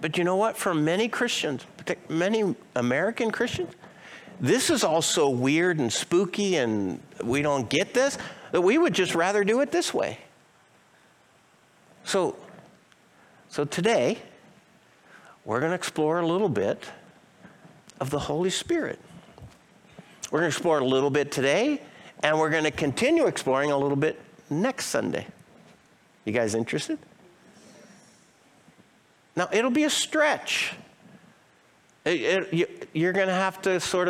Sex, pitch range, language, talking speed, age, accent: male, 155-215 Hz, English, 135 wpm, 60-79, American